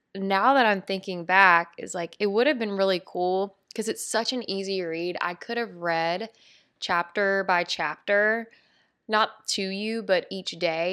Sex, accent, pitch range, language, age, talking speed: female, American, 175-210 Hz, English, 20-39, 175 wpm